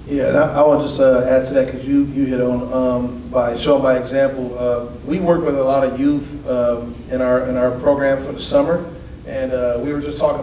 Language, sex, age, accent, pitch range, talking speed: English, male, 40-59, American, 130-145 Hz, 255 wpm